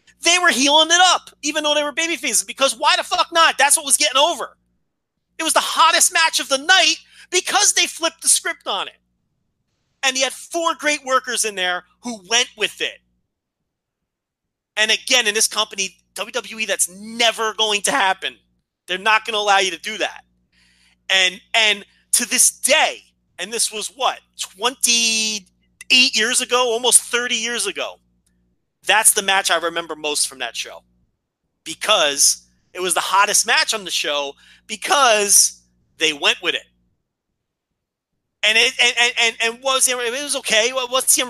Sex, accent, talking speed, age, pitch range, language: male, American, 175 wpm, 30-49, 190-275 Hz, English